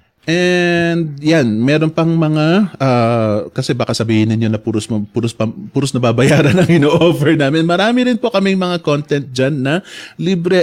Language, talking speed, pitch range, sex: English, 160 wpm, 115-155 Hz, male